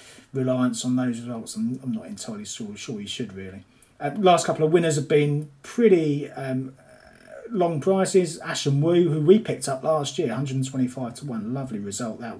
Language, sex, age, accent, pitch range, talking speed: English, male, 30-49, British, 110-160 Hz, 185 wpm